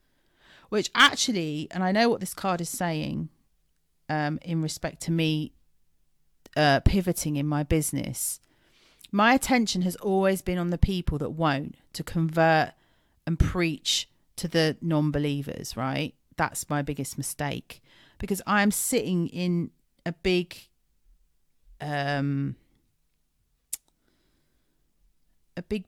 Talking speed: 115 wpm